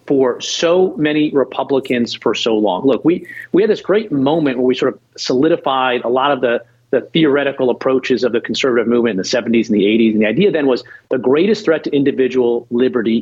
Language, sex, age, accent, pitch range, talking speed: English, male, 40-59, American, 125-160 Hz, 215 wpm